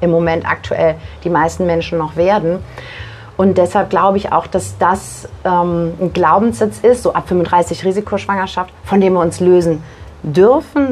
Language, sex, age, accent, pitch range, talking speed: German, female, 30-49, German, 155-195 Hz, 160 wpm